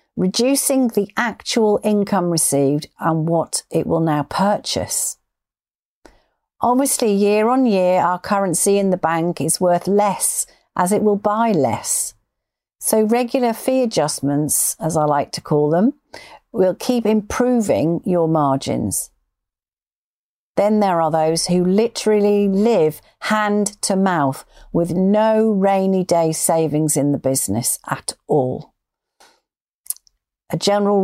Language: English